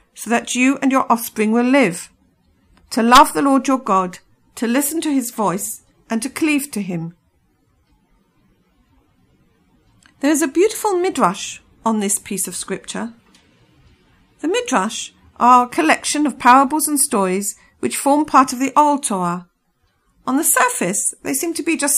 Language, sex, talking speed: English, female, 160 wpm